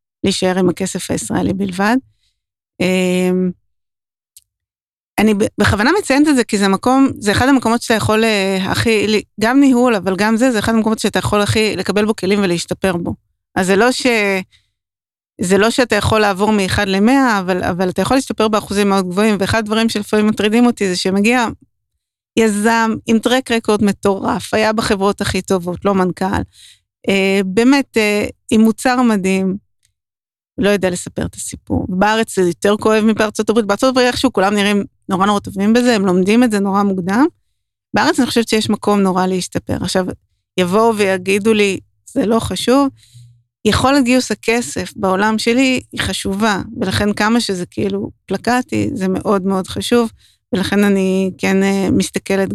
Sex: female